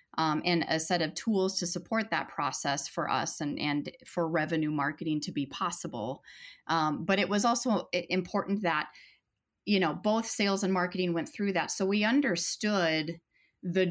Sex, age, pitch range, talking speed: female, 30-49, 160-195 Hz, 175 wpm